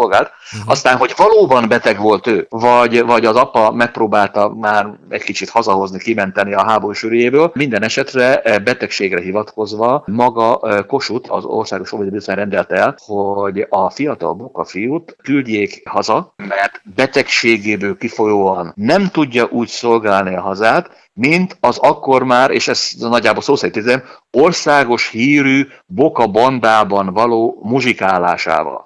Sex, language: male, Hungarian